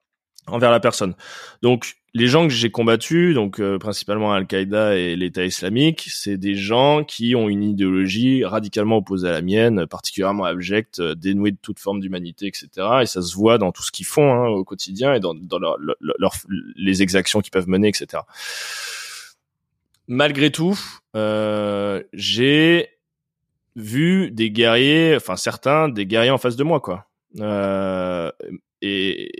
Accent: French